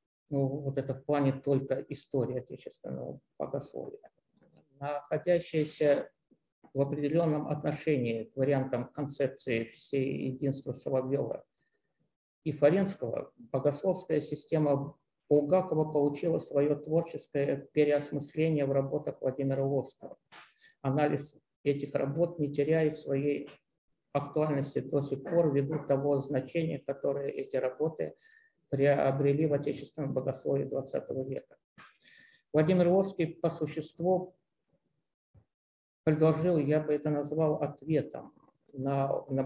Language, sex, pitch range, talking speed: Russian, male, 140-160 Hz, 100 wpm